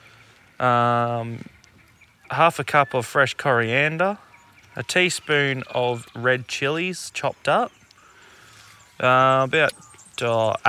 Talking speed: 95 wpm